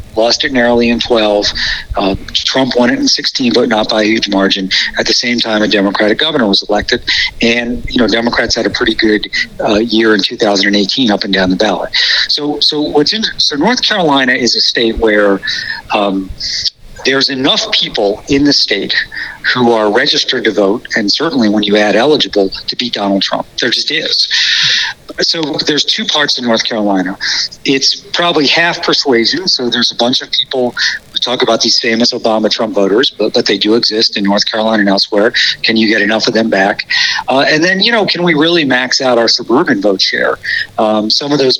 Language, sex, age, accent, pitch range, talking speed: English, male, 50-69, American, 105-145 Hz, 200 wpm